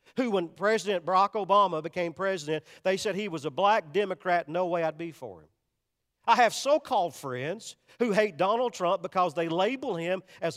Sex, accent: male, American